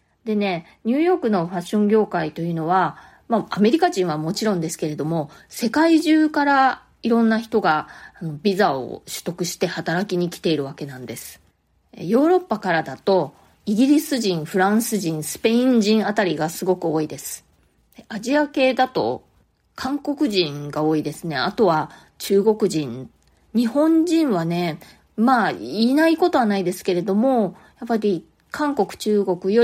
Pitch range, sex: 170-235 Hz, female